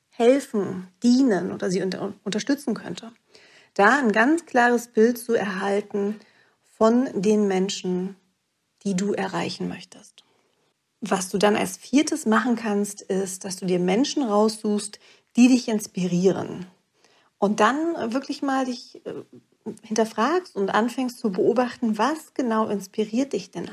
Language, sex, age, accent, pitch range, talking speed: German, female, 40-59, German, 195-240 Hz, 130 wpm